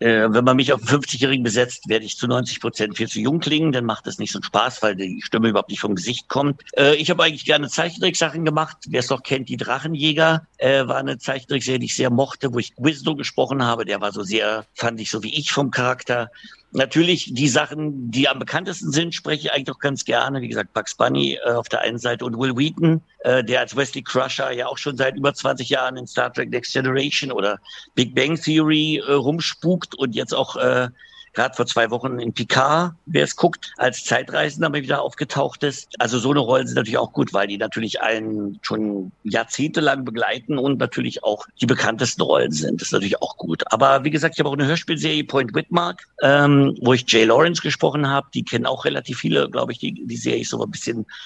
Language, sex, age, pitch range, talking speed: German, male, 60-79, 120-150 Hz, 225 wpm